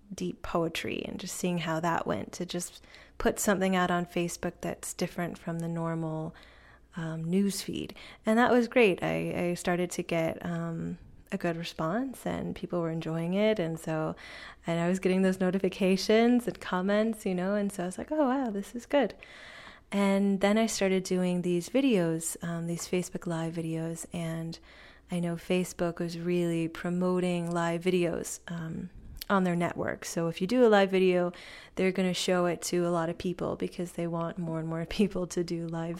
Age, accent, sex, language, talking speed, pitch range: 20-39, American, female, English, 190 wpm, 170-200 Hz